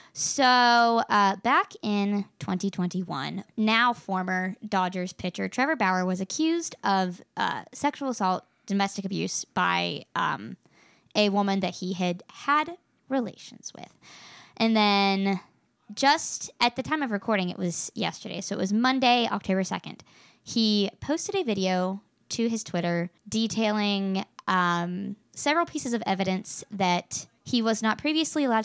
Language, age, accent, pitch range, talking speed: English, 20-39, American, 185-235 Hz, 135 wpm